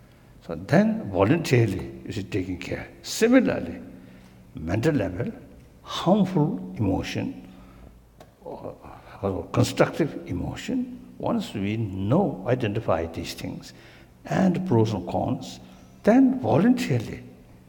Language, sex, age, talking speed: English, male, 60-79, 90 wpm